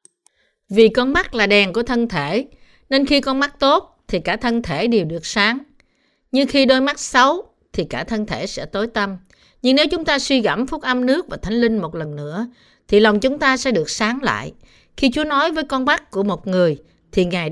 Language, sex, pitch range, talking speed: Vietnamese, female, 190-255 Hz, 225 wpm